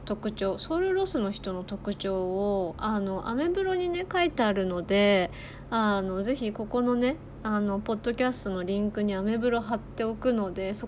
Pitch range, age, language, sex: 190-245 Hz, 20-39, Japanese, female